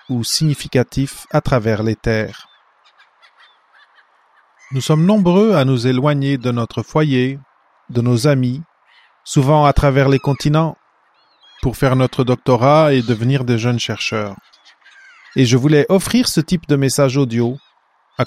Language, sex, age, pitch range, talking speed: English, male, 30-49, 120-150 Hz, 140 wpm